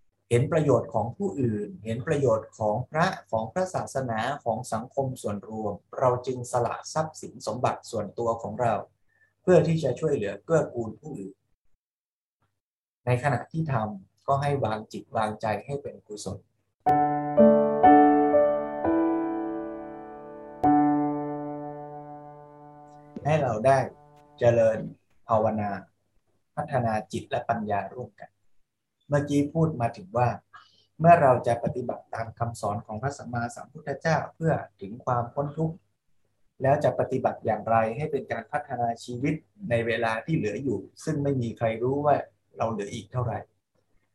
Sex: male